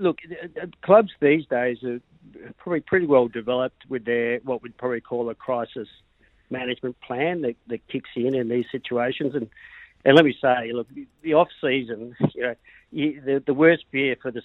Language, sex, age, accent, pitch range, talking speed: English, male, 50-69, Australian, 120-140 Hz, 180 wpm